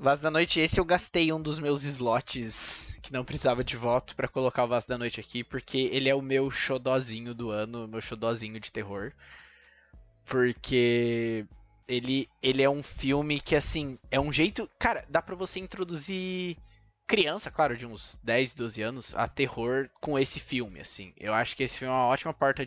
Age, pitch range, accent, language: 20-39, 120-160 Hz, Brazilian, Portuguese